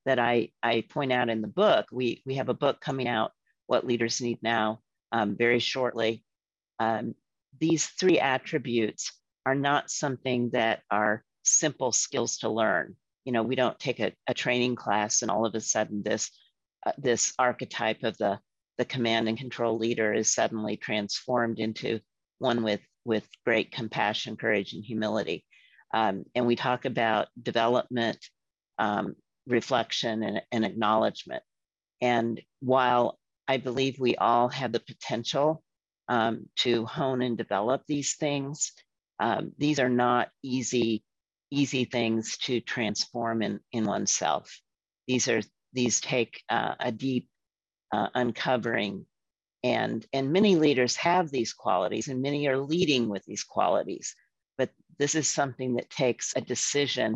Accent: American